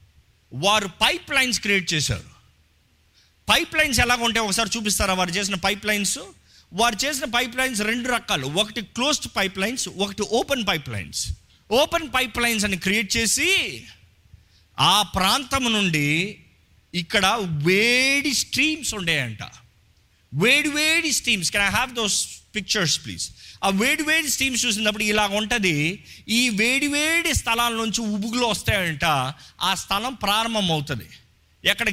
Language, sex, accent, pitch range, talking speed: Telugu, male, native, 150-235 Hz, 125 wpm